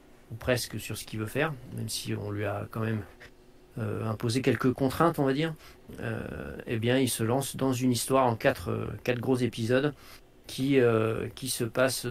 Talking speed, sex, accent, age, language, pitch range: 200 wpm, male, French, 40-59, French, 110-125 Hz